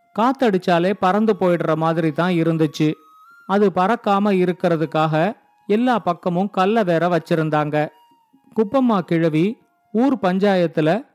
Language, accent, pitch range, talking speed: Tamil, native, 175-220 Hz, 95 wpm